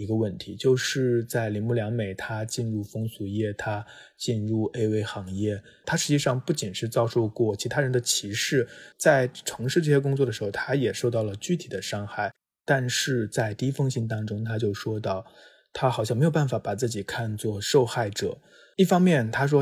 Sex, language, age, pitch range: male, Chinese, 20-39, 105-130 Hz